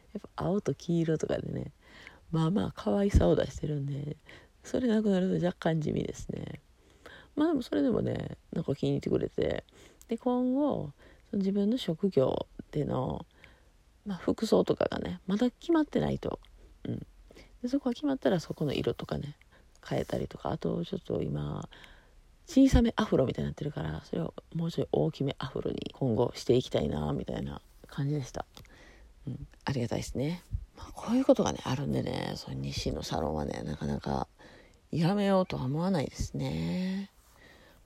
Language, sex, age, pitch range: Japanese, female, 40-59, 140-220 Hz